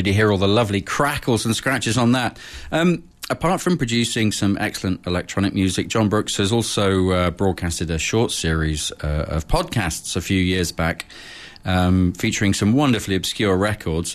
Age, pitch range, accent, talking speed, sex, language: 40-59, 90-115 Hz, British, 170 wpm, male, English